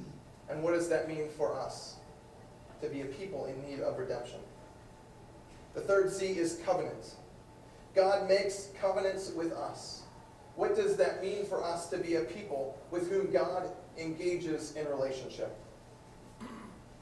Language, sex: English, male